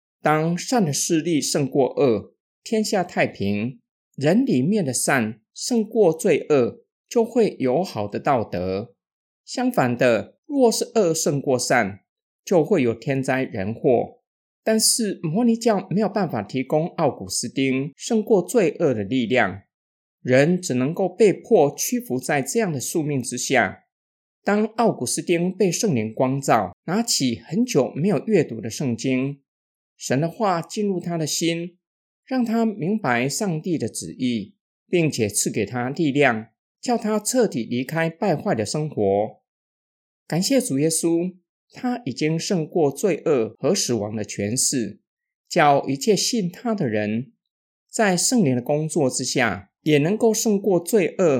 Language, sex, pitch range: Chinese, male, 130-215 Hz